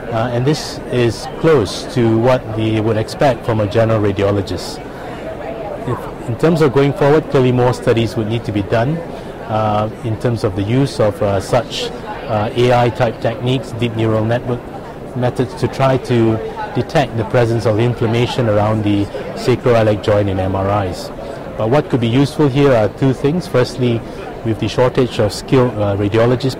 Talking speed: 170 wpm